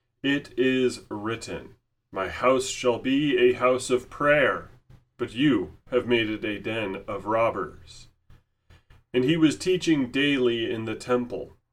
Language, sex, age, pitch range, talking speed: English, male, 30-49, 110-130 Hz, 145 wpm